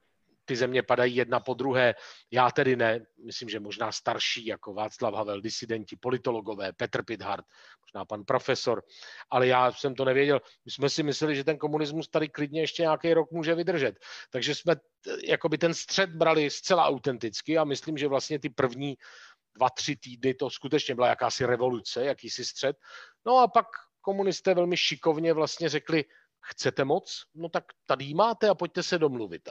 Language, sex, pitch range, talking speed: Czech, male, 130-165 Hz, 175 wpm